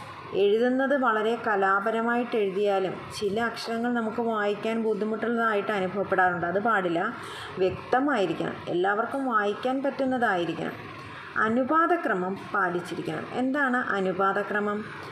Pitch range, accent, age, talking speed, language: 190-235 Hz, native, 30-49, 80 wpm, Malayalam